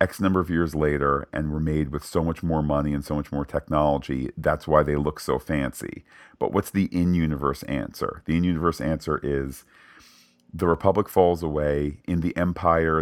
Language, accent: English, American